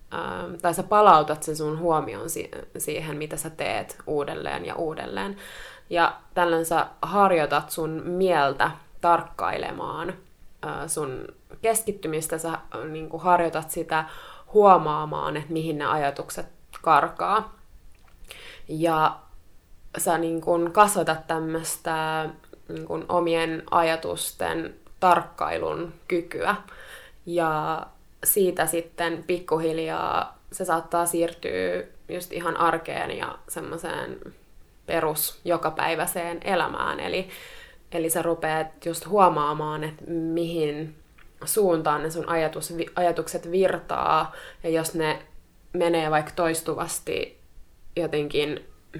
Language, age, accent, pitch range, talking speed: Finnish, 20-39, native, 155-175 Hz, 90 wpm